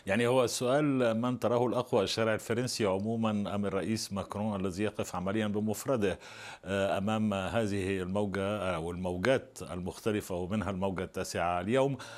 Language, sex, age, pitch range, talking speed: Arabic, male, 60-79, 100-120 Hz, 130 wpm